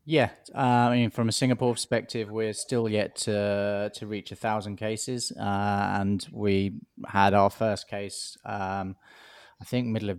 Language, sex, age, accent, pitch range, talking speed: English, male, 20-39, British, 100-110 Hz, 170 wpm